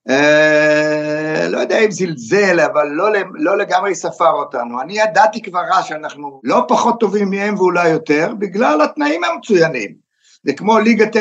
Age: 60-79